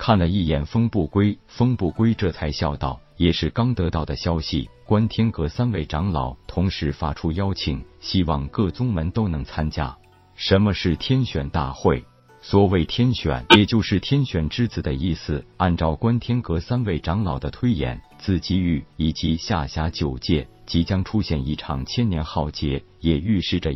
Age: 50-69